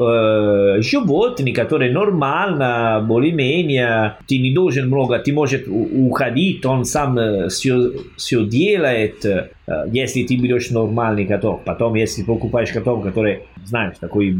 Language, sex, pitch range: Russian, male, 100-130 Hz